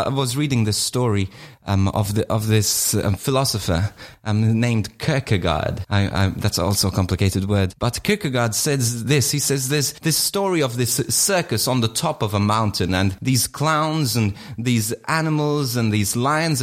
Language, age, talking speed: English, 30-49, 175 wpm